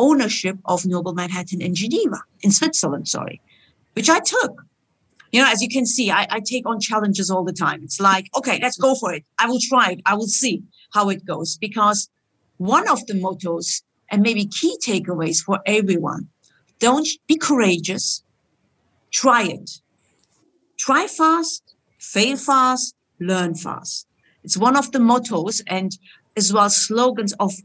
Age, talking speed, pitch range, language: 50-69, 165 wpm, 185-255 Hz, English